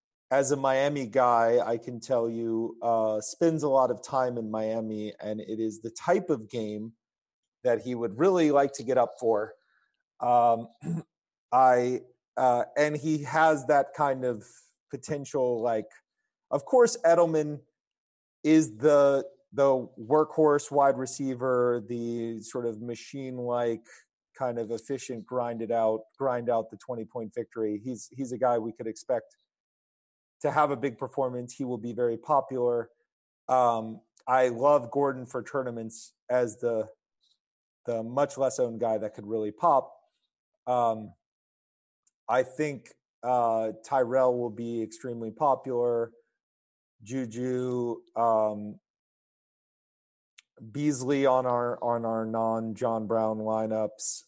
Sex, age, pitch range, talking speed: male, 40-59, 115-135 Hz, 135 wpm